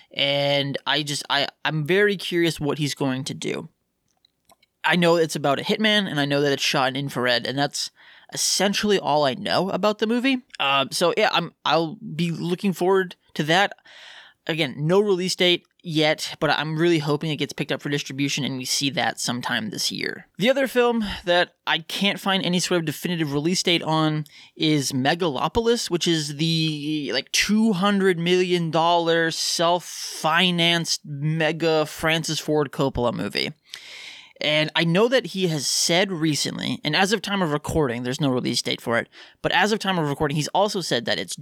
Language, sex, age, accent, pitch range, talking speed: English, male, 20-39, American, 145-180 Hz, 180 wpm